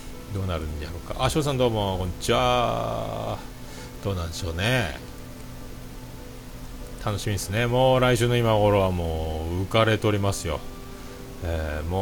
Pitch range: 85-120 Hz